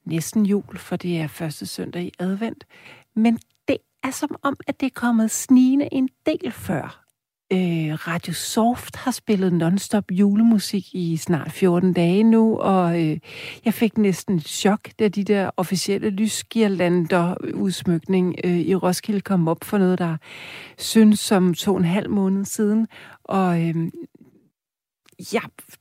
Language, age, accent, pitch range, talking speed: Danish, 60-79, native, 175-220 Hz, 135 wpm